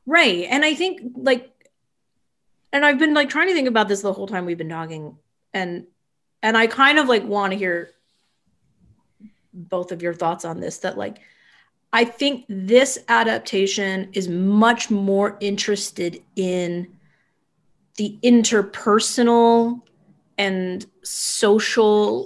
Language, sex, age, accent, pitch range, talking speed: English, female, 30-49, American, 185-235 Hz, 135 wpm